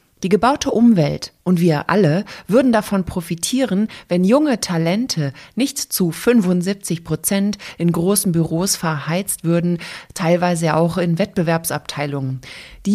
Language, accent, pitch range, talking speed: German, German, 165-215 Hz, 120 wpm